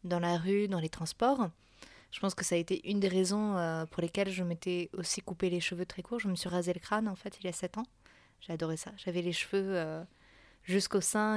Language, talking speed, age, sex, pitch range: French, 245 wpm, 20-39, female, 175-215 Hz